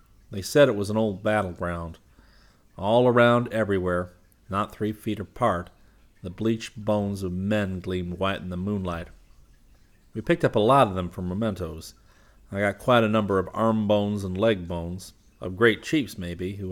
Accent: American